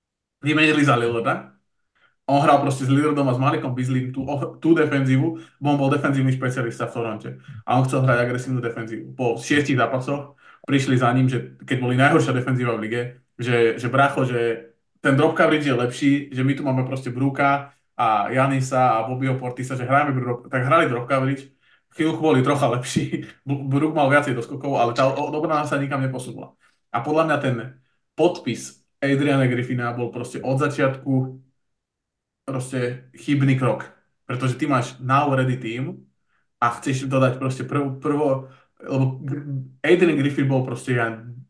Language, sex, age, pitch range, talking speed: Slovak, male, 20-39, 125-140 Hz, 160 wpm